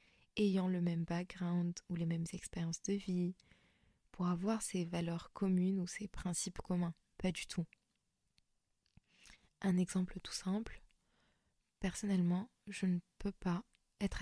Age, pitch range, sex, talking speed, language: 20-39, 175-195 Hz, female, 135 wpm, French